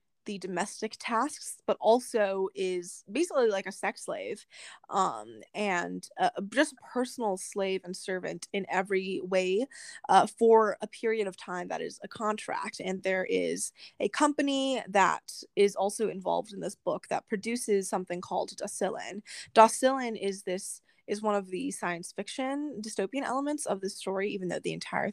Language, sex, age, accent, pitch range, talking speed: English, female, 10-29, American, 190-235 Hz, 160 wpm